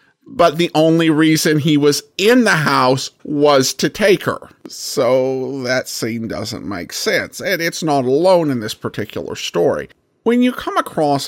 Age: 50-69